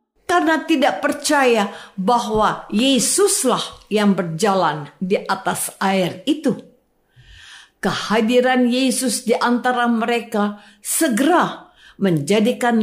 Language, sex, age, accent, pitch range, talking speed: Indonesian, female, 50-69, native, 195-285 Hz, 85 wpm